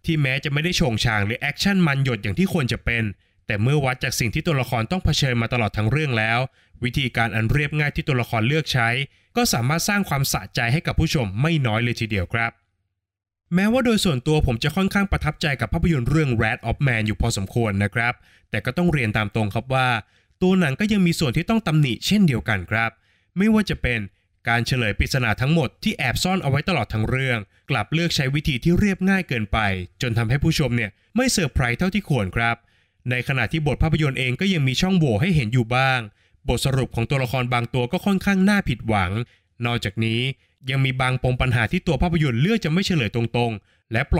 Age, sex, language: 20-39, male, Thai